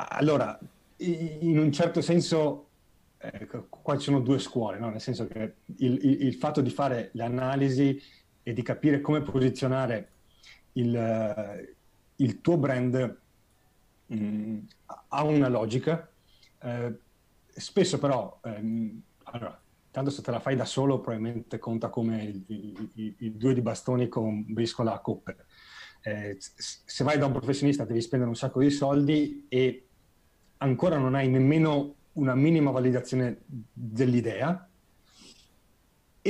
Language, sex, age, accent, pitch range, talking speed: Italian, male, 30-49, native, 115-140 Hz, 125 wpm